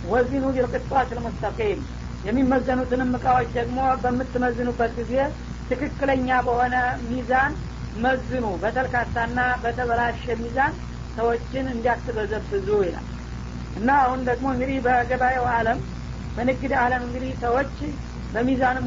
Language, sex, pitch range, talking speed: Amharic, female, 235-255 Hz, 100 wpm